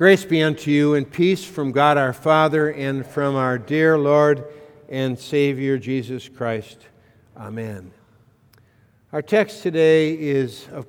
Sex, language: male, English